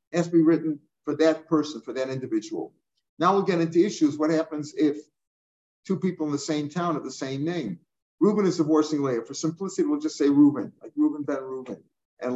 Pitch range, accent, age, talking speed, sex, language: 145-165 Hz, American, 50-69, 210 wpm, male, English